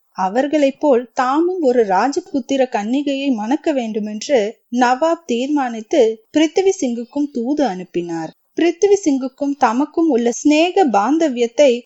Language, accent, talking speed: Tamil, native, 95 wpm